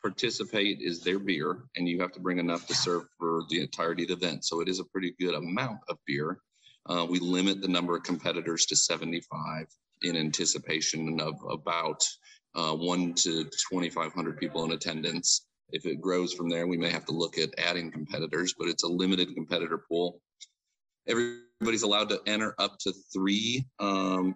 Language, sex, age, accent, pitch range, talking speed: English, male, 40-59, American, 80-95 Hz, 180 wpm